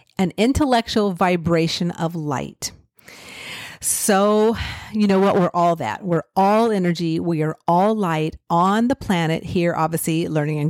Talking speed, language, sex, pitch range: 145 wpm, English, female, 170-235 Hz